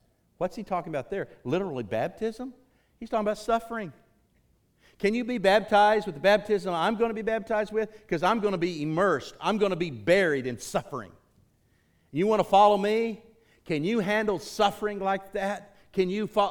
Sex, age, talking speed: male, 50-69, 180 wpm